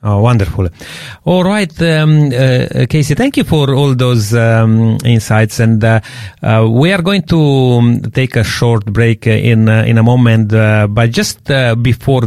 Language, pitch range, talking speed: English, 110-140 Hz, 175 wpm